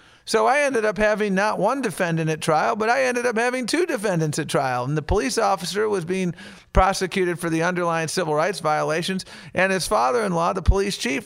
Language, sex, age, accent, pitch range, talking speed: English, male, 50-69, American, 160-205 Hz, 205 wpm